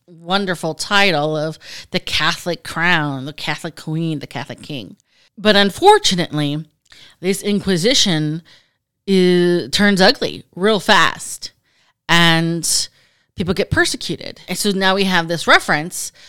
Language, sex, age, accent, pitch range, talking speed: English, female, 30-49, American, 155-195 Hz, 120 wpm